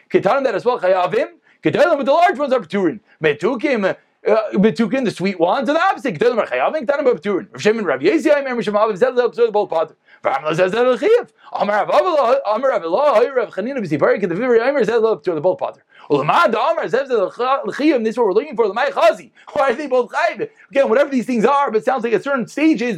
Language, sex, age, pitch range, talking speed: English, male, 30-49, 215-280 Hz, 95 wpm